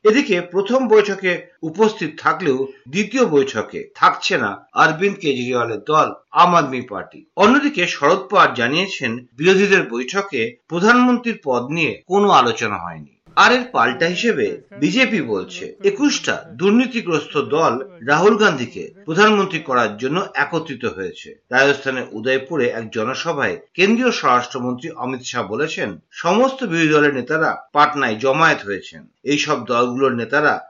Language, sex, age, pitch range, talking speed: Bengali, male, 50-69, 135-210 Hz, 125 wpm